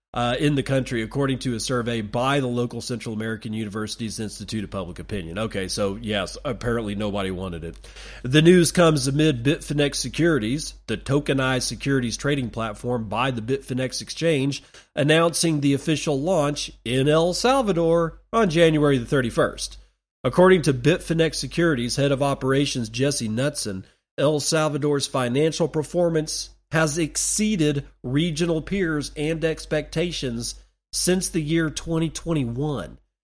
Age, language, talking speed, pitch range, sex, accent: 40-59, English, 135 wpm, 120-160 Hz, male, American